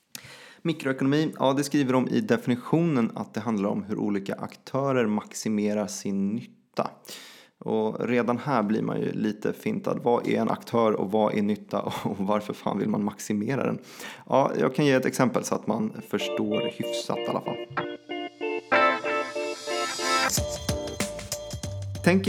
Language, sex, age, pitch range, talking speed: Swedish, male, 30-49, 115-170 Hz, 150 wpm